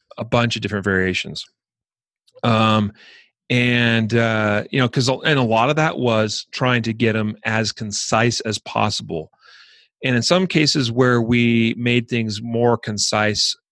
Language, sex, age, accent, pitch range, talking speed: English, male, 40-59, American, 105-130 Hz, 150 wpm